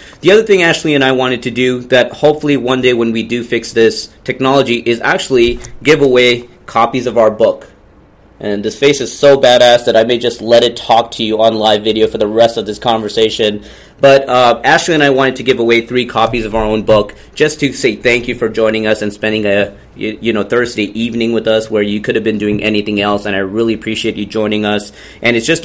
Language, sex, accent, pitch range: English, male, American, 105-125 Hz